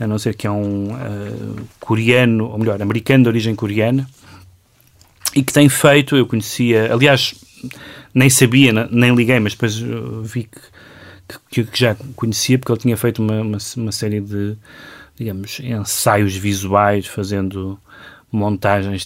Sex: male